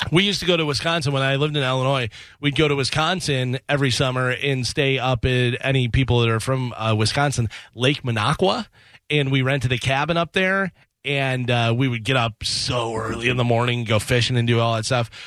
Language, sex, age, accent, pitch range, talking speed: English, male, 30-49, American, 120-155 Hz, 215 wpm